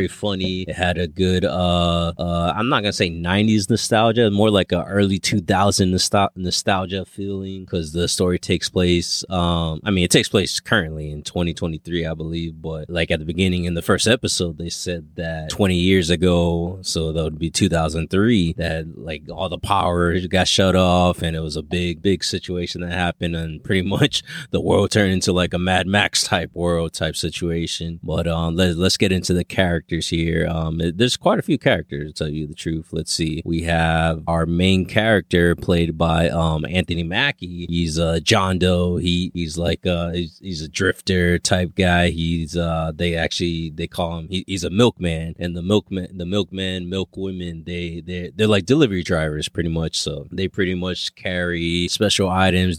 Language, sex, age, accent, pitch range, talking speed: English, male, 20-39, American, 85-95 Hz, 190 wpm